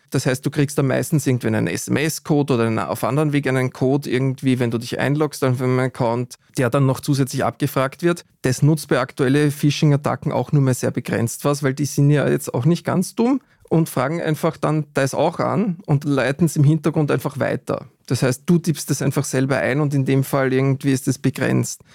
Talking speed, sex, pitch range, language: 220 wpm, male, 130-155 Hz, German